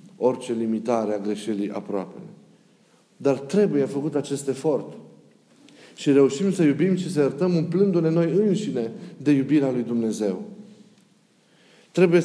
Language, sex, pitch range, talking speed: Romanian, male, 140-185 Hz, 125 wpm